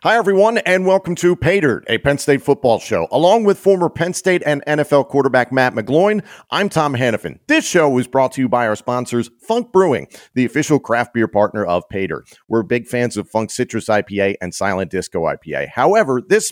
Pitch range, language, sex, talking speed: 100-145 Hz, English, male, 200 wpm